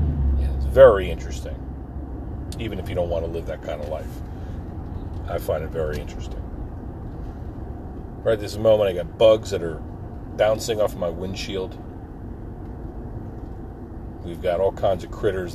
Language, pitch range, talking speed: English, 85-110 Hz, 145 wpm